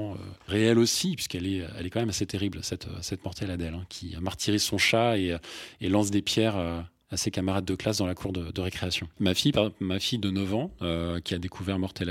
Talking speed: 240 wpm